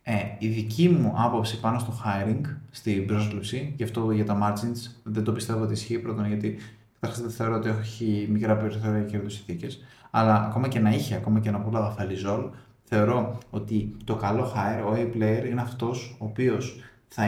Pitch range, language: 110-125 Hz, Greek